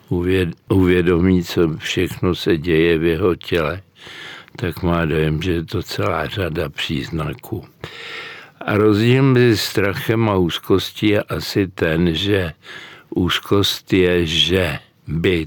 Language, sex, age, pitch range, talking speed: Czech, male, 60-79, 85-105 Hz, 120 wpm